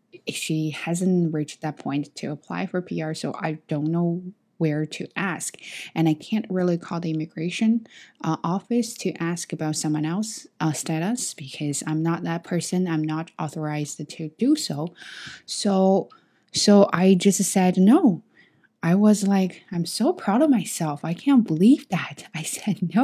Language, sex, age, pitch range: Chinese, female, 20-39, 155-200 Hz